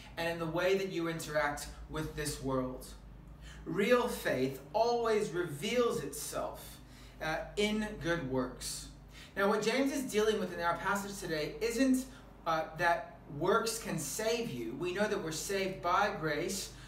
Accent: American